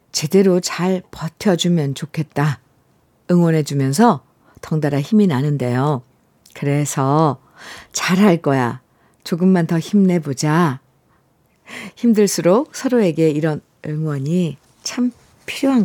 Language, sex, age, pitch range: Korean, female, 50-69, 155-215 Hz